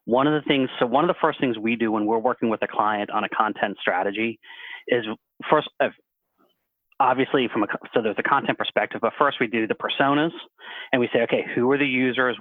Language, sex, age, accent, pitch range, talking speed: English, male, 30-49, American, 110-140 Hz, 220 wpm